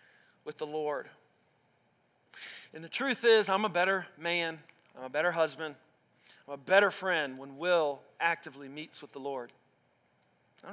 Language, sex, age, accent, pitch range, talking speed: English, male, 40-59, American, 180-230 Hz, 150 wpm